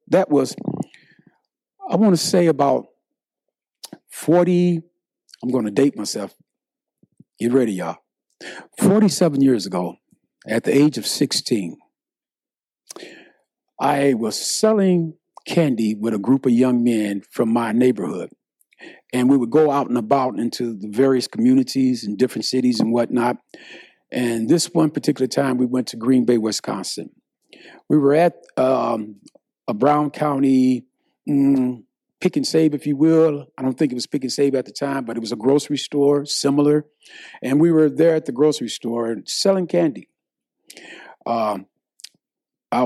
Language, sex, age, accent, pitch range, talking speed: English, male, 50-69, American, 125-160 Hz, 150 wpm